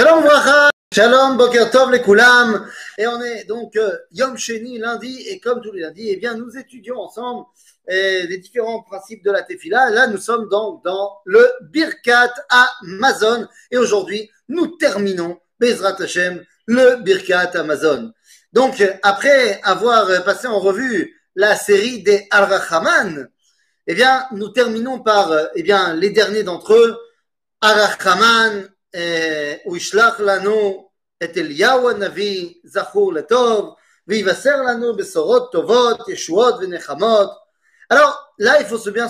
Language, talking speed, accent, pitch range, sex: French, 115 wpm, French, 200-265 Hz, male